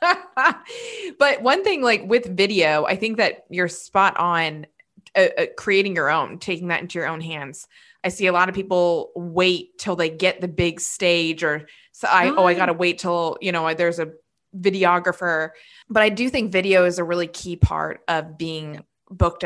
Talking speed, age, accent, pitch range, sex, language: 195 wpm, 20-39, American, 165-200 Hz, female, English